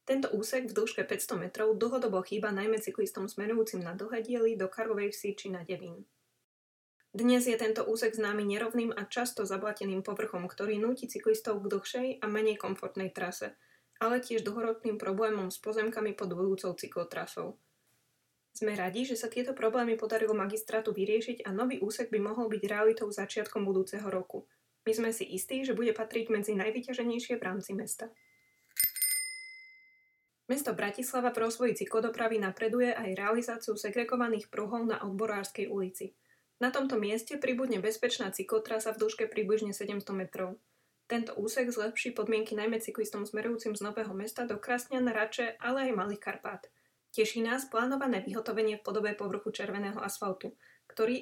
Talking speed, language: 150 wpm, Slovak